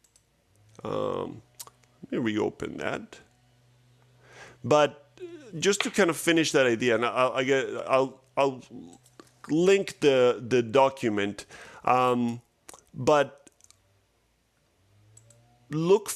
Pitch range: 110-145 Hz